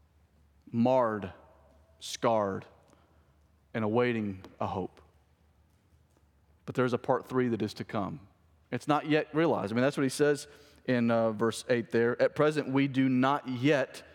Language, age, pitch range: English, 40-59, 105-175 Hz